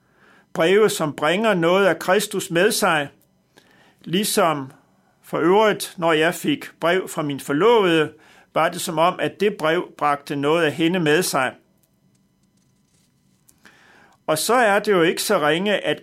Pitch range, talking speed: 155-200 Hz, 150 wpm